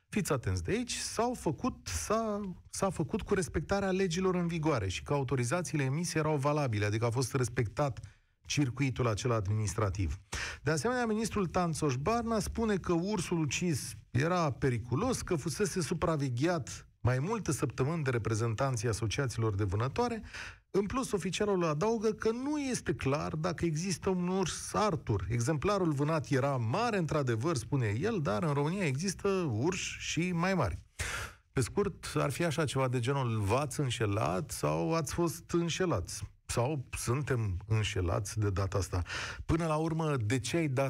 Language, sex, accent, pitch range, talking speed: Romanian, male, native, 115-175 Hz, 150 wpm